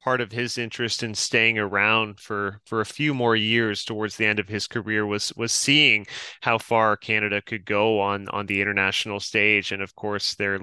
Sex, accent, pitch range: male, American, 110-125 Hz